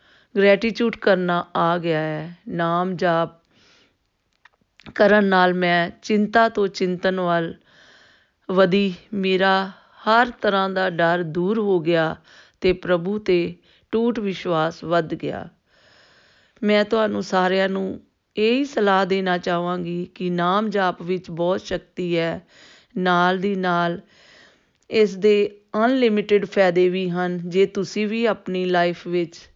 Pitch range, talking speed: 175-205 Hz, 90 wpm